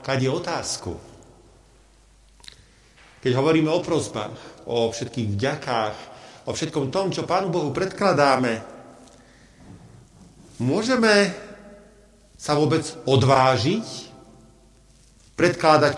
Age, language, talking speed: 50-69, Slovak, 80 wpm